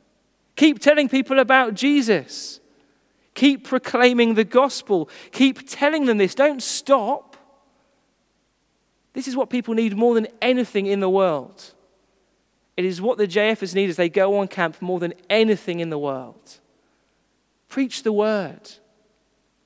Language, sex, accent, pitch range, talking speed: English, male, British, 195-240 Hz, 140 wpm